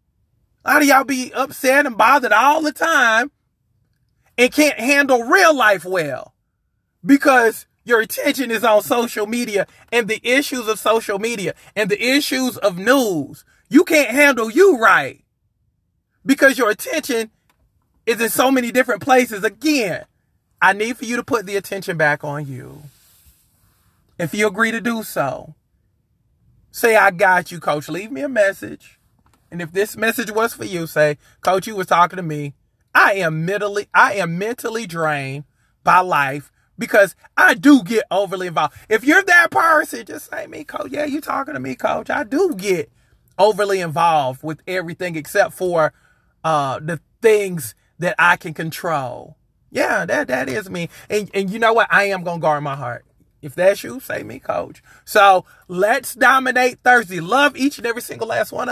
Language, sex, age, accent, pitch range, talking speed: English, male, 30-49, American, 165-250 Hz, 170 wpm